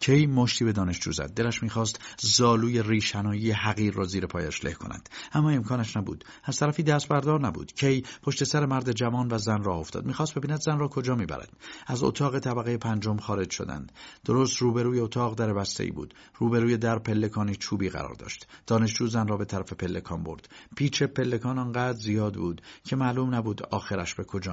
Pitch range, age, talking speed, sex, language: 100-125 Hz, 50-69, 180 wpm, male, Persian